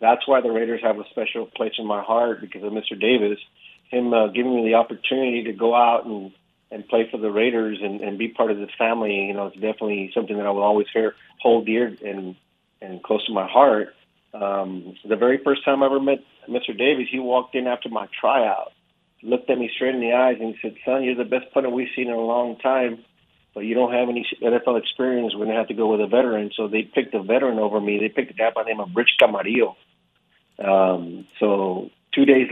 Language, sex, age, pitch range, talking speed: English, male, 40-59, 105-120 Hz, 235 wpm